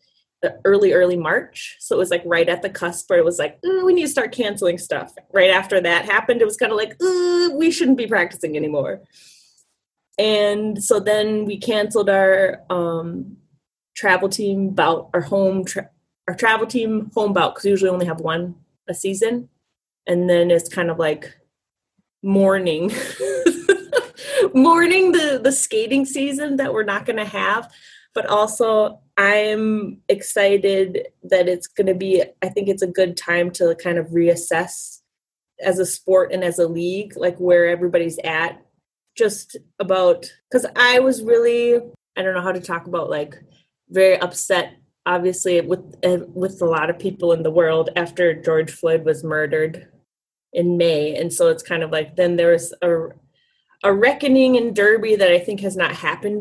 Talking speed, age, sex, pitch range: 175 wpm, 20-39, female, 175-235 Hz